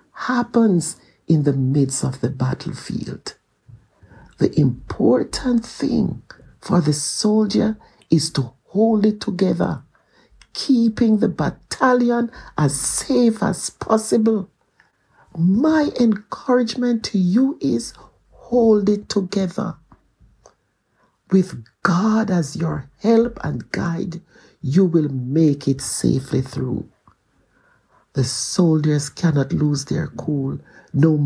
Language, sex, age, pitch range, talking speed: English, male, 60-79, 140-215 Hz, 100 wpm